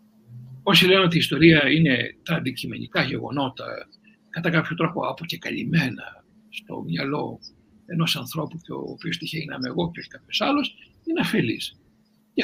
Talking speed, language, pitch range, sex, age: 145 wpm, Greek, 165-230 Hz, male, 60-79